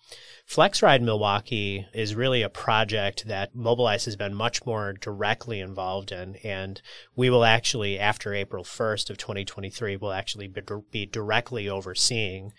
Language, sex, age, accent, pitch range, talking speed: English, male, 30-49, American, 100-120 Hz, 140 wpm